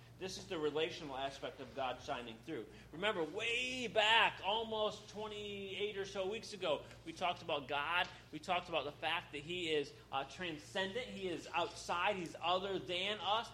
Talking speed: 175 wpm